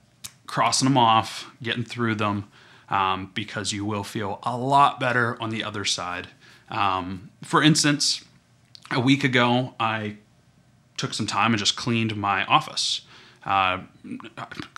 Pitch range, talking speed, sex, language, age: 100-125 Hz, 140 wpm, male, English, 30-49